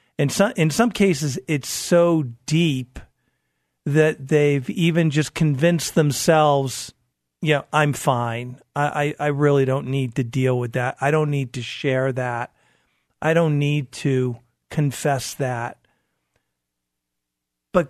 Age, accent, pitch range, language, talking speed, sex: 50-69, American, 130-155 Hz, English, 140 wpm, male